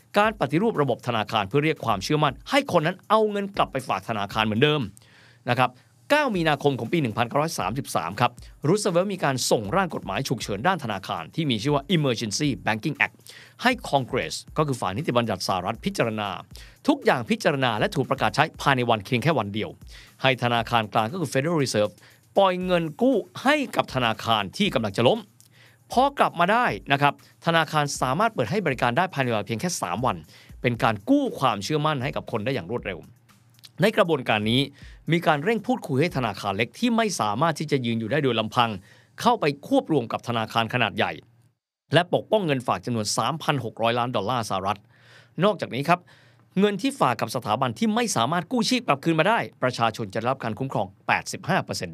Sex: male